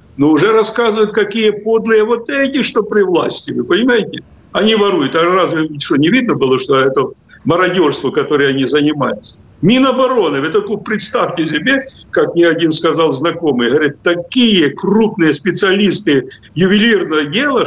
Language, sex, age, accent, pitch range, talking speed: Russian, male, 50-69, native, 155-225 Hz, 145 wpm